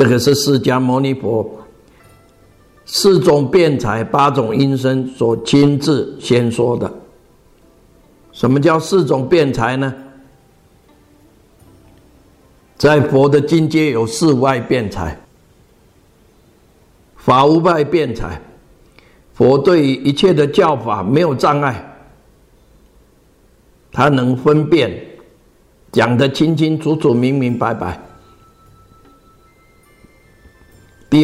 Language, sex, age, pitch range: Chinese, male, 50-69, 110-150 Hz